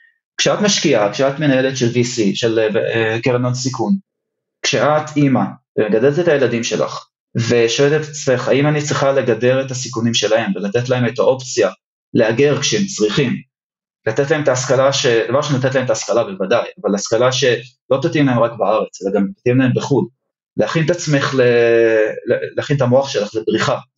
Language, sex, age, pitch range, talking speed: Hebrew, male, 30-49, 120-155 Hz, 165 wpm